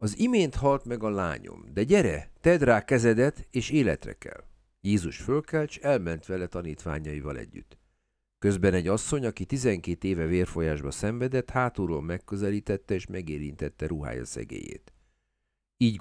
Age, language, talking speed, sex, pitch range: 50-69, Hungarian, 135 wpm, male, 85-125 Hz